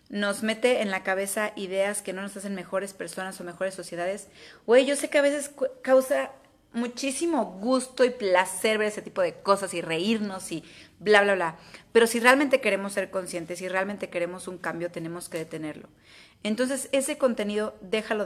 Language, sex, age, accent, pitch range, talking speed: Spanish, female, 30-49, Mexican, 180-240 Hz, 180 wpm